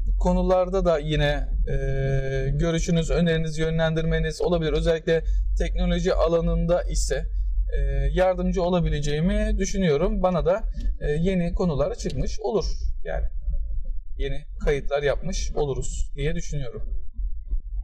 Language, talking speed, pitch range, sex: Turkish, 100 wpm, 140-185 Hz, male